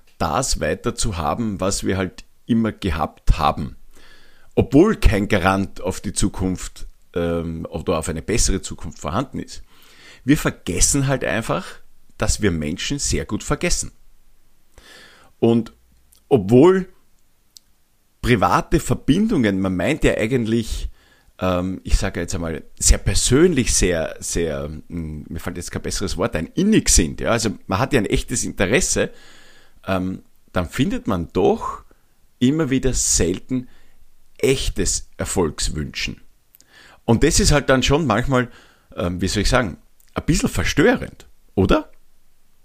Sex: male